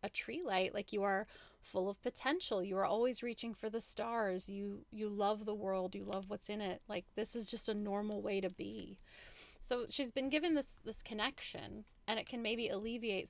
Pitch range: 190-235 Hz